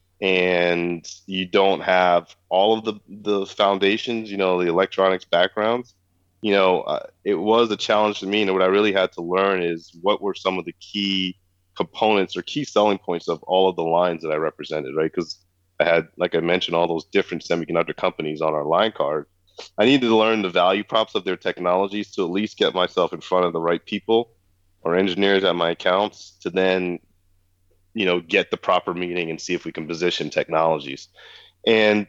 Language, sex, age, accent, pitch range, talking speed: English, male, 20-39, American, 85-105 Hz, 200 wpm